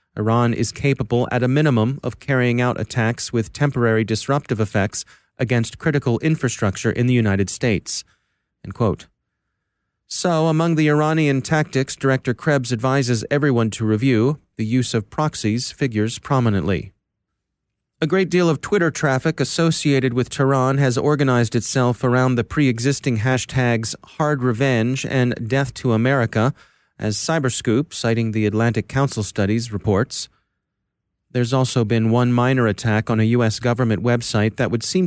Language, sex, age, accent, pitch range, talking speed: English, male, 30-49, American, 110-130 Hz, 145 wpm